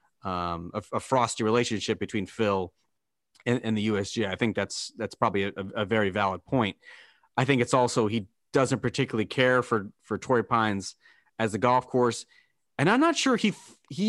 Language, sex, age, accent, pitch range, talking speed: English, male, 30-49, American, 110-140 Hz, 185 wpm